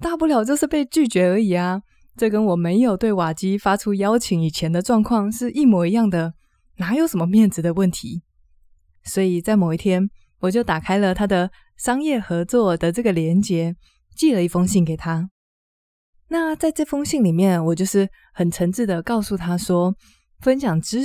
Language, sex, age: Chinese, female, 20-39